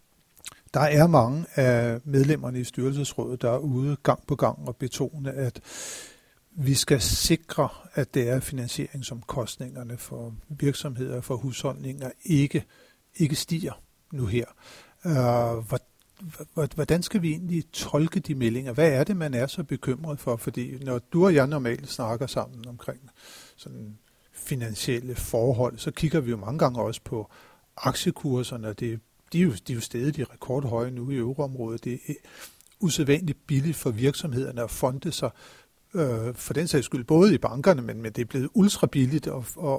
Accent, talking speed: native, 160 wpm